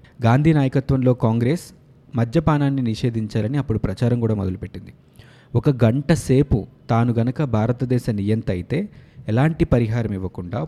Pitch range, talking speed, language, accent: 115-145 Hz, 105 wpm, Telugu, native